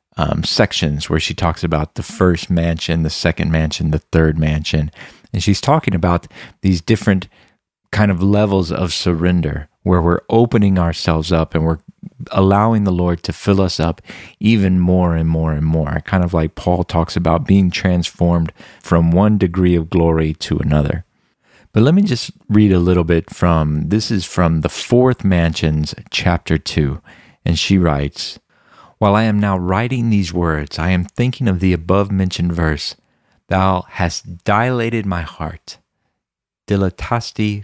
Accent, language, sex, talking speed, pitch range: American, English, male, 160 wpm, 85-105 Hz